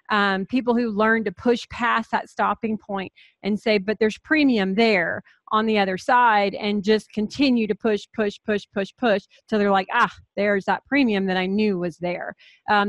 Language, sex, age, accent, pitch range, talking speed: English, female, 30-49, American, 190-225 Hz, 195 wpm